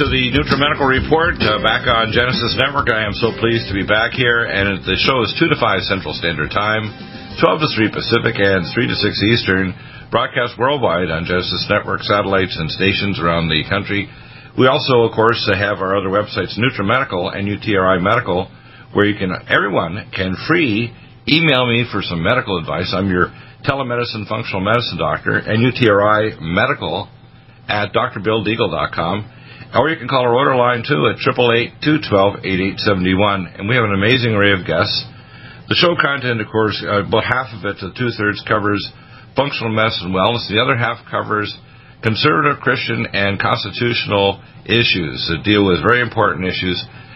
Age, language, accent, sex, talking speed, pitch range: 50-69, English, American, male, 170 wpm, 100-125 Hz